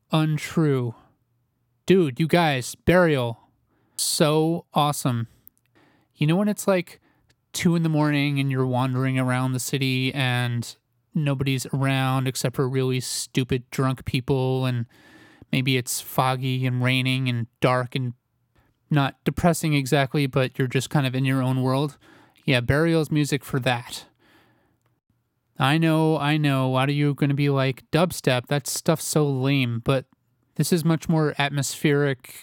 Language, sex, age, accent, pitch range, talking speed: English, male, 30-49, American, 125-150 Hz, 145 wpm